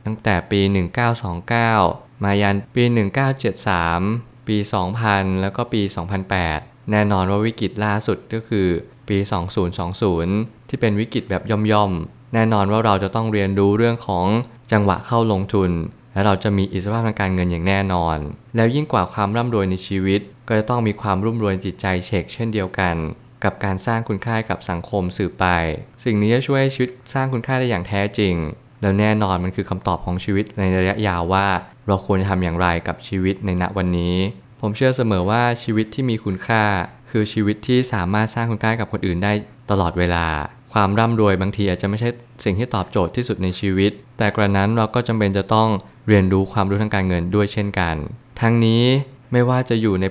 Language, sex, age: Thai, male, 20-39